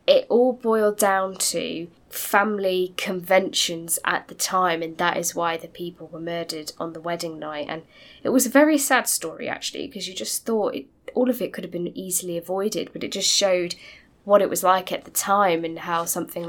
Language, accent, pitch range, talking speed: English, British, 170-205 Hz, 205 wpm